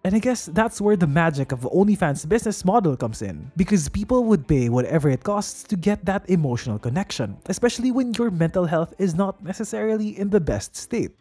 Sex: male